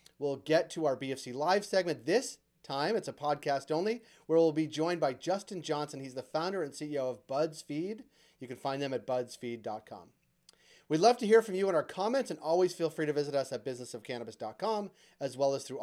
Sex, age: male, 30-49